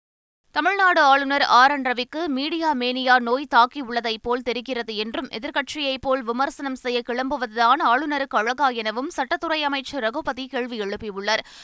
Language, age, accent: Tamil, 20-39, native